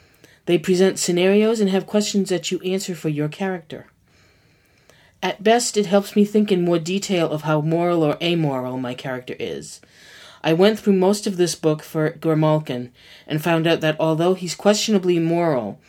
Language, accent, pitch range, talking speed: English, American, 150-190 Hz, 175 wpm